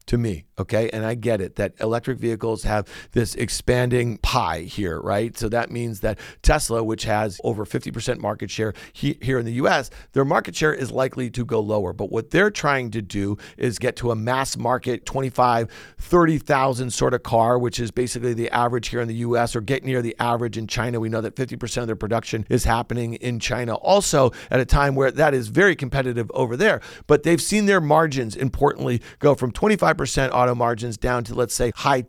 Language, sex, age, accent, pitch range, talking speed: English, male, 50-69, American, 115-140 Hz, 210 wpm